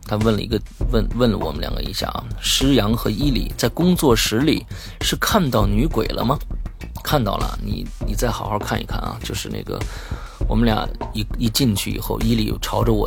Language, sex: Chinese, male